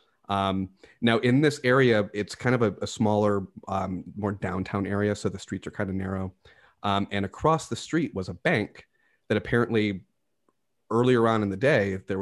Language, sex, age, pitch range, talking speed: English, male, 30-49, 100-115 Hz, 185 wpm